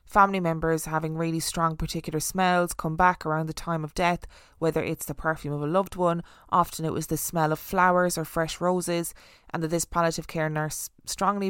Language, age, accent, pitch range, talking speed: English, 20-39, Irish, 160-175 Hz, 205 wpm